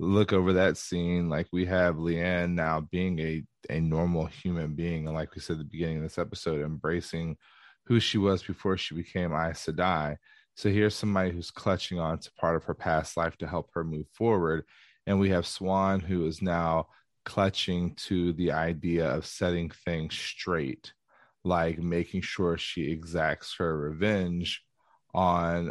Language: English